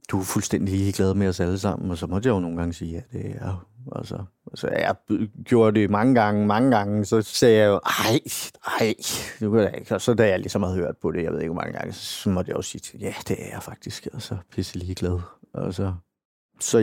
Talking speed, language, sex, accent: 260 wpm, Danish, male, native